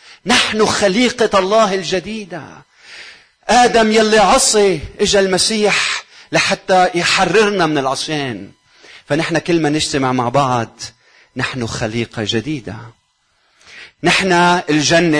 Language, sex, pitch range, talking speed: Arabic, male, 120-175 Hz, 95 wpm